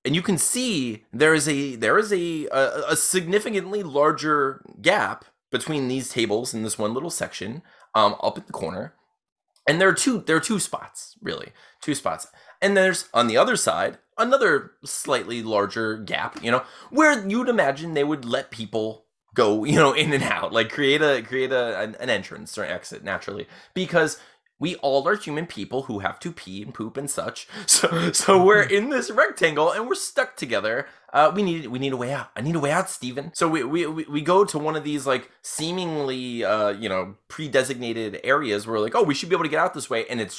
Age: 20-39